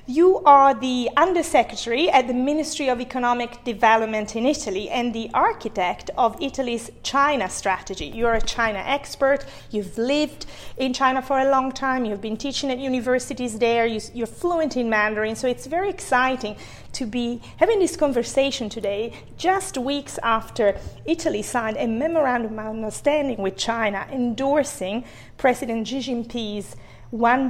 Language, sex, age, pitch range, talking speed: English, female, 30-49, 220-270 Hz, 150 wpm